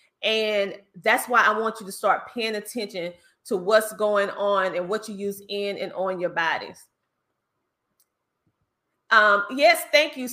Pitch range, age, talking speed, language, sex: 200-255 Hz, 30-49, 155 wpm, English, female